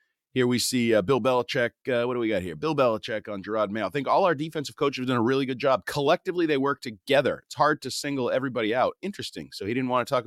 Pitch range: 115-135 Hz